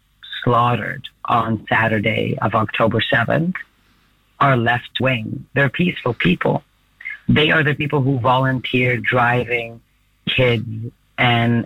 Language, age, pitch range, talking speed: English, 40-59, 115-130 Hz, 105 wpm